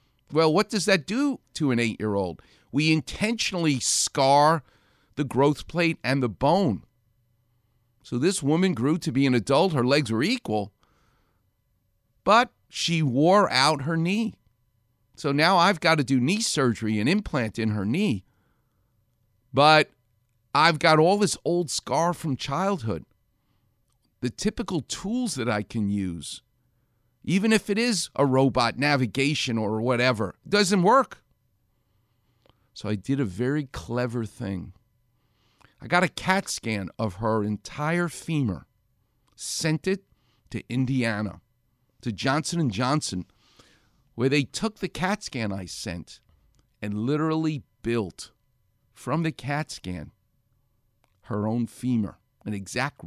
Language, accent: English, American